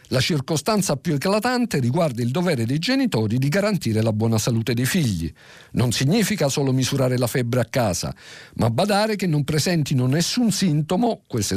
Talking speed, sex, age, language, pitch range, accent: 165 wpm, male, 50-69, Italian, 110-170 Hz, native